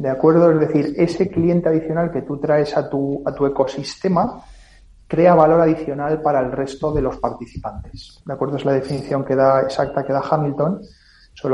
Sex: male